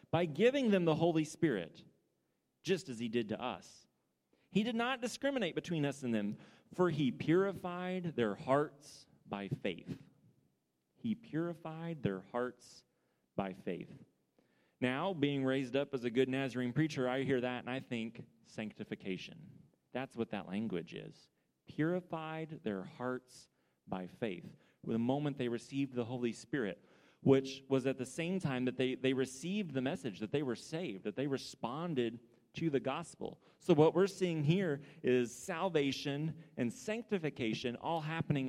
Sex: male